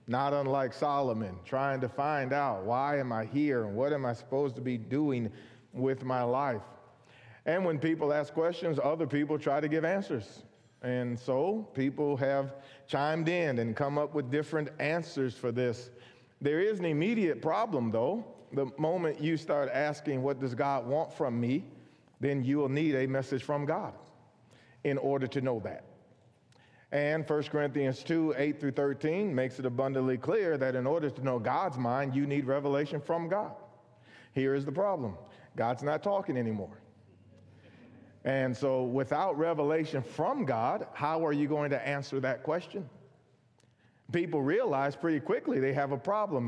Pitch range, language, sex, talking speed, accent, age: 125-150 Hz, English, male, 170 wpm, American, 40-59